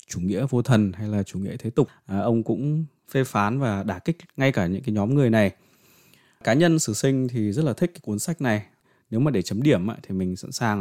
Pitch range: 100-135 Hz